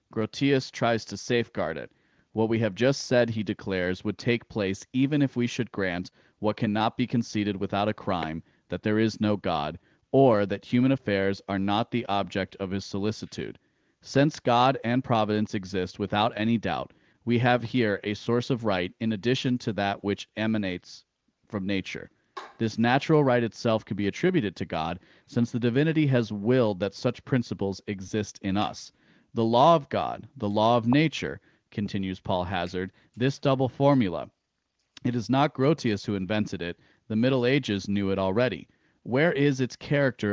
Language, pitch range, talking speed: English, 100-125 Hz, 175 wpm